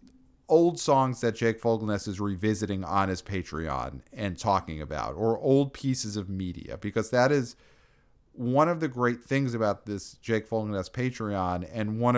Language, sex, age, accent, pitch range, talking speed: English, male, 40-59, American, 100-130 Hz, 165 wpm